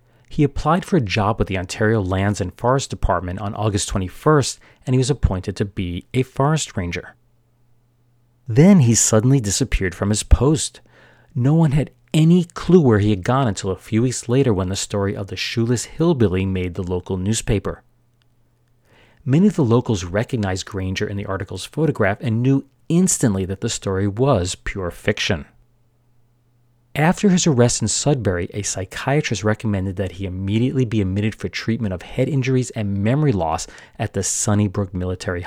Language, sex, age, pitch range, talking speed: English, male, 40-59, 100-130 Hz, 170 wpm